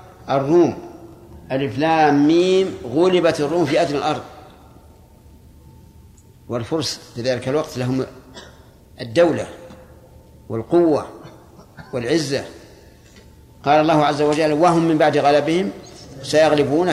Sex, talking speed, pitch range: male, 90 wpm, 125-160 Hz